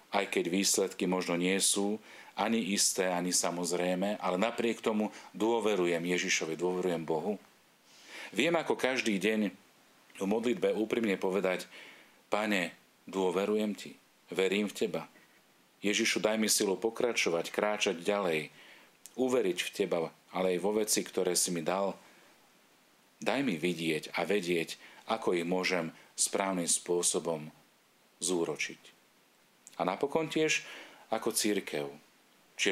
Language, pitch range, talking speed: Slovak, 85-105 Hz, 120 wpm